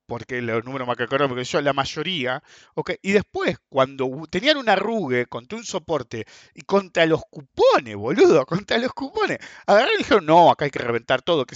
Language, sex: English, male